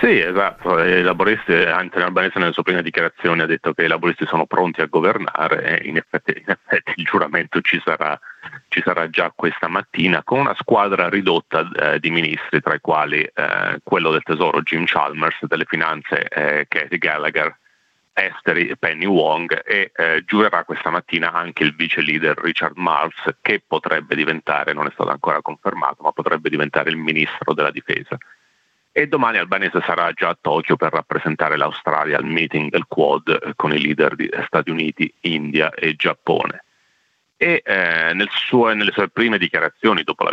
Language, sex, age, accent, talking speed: Italian, male, 30-49, native, 170 wpm